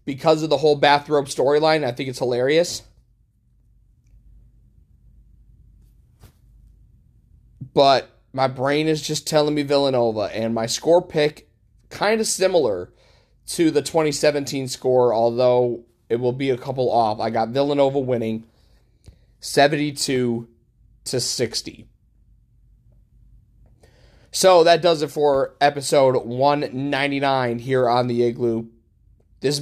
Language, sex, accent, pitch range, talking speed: English, male, American, 115-150 Hz, 115 wpm